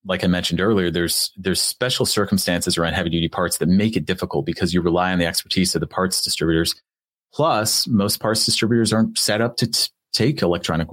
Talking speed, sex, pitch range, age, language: 205 wpm, male, 90-110 Hz, 30-49, English